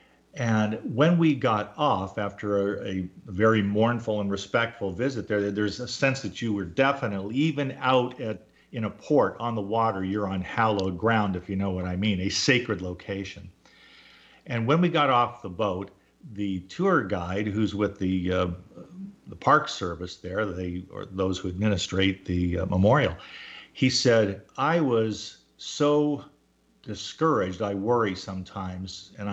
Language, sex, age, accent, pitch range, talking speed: English, male, 50-69, American, 95-120 Hz, 160 wpm